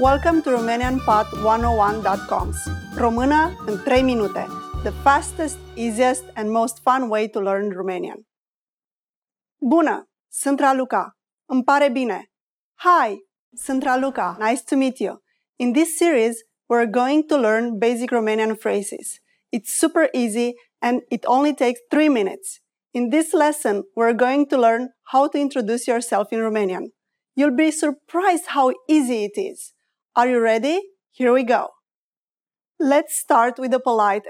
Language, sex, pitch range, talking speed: English, female, 225-285 Hz, 140 wpm